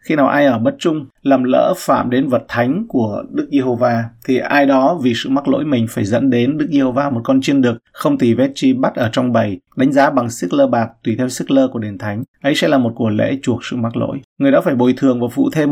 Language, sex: Vietnamese, male